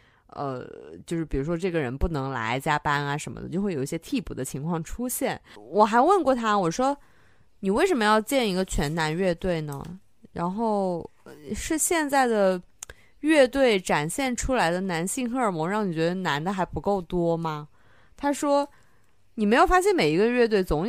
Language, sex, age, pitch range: Chinese, female, 20-39, 155-225 Hz